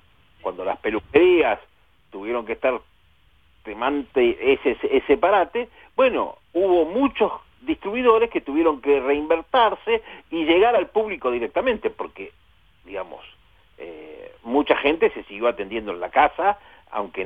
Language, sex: Spanish, male